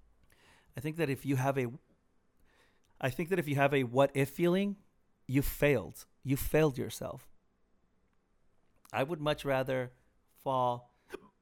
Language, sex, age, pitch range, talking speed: English, male, 30-49, 105-130 Hz, 140 wpm